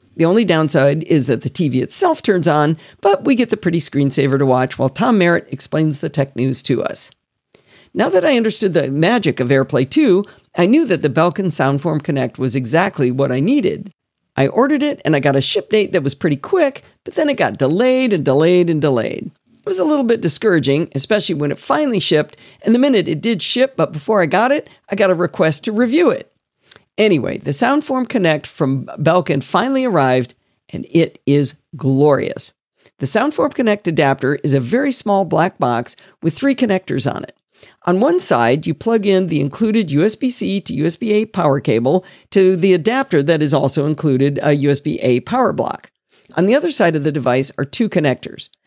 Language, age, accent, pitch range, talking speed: English, 50-69, American, 140-210 Hz, 195 wpm